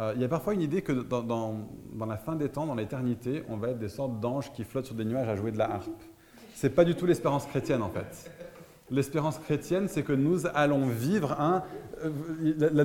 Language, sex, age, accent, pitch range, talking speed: French, male, 30-49, French, 125-160 Hz, 235 wpm